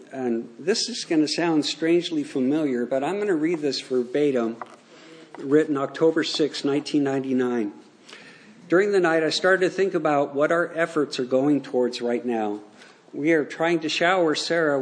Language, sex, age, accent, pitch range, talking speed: English, male, 50-69, American, 130-165 Hz, 165 wpm